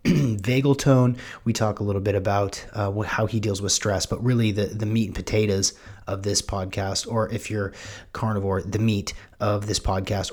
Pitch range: 100-115 Hz